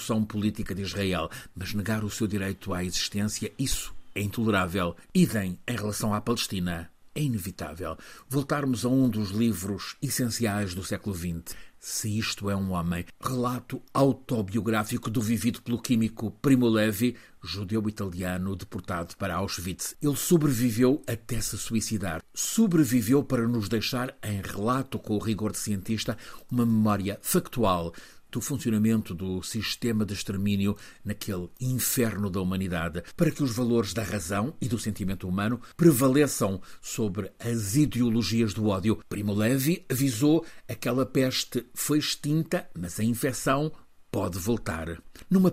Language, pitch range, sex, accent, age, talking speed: Portuguese, 100-125 Hz, male, Portuguese, 60-79, 140 wpm